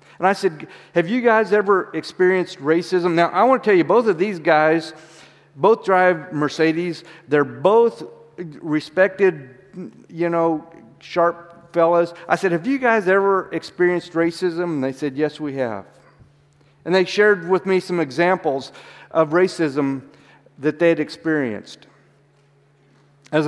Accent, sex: American, male